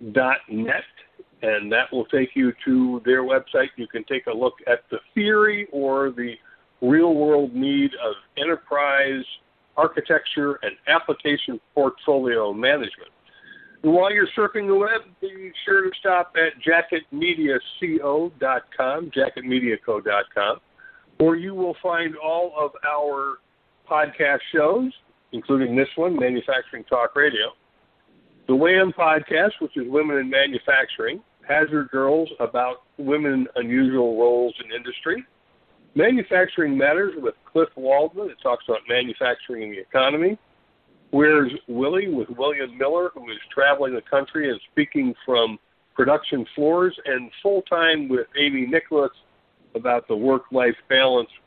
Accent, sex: American, male